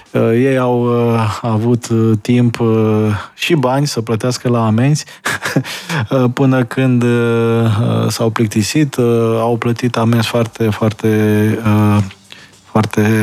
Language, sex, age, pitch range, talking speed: Romanian, male, 20-39, 115-135 Hz, 90 wpm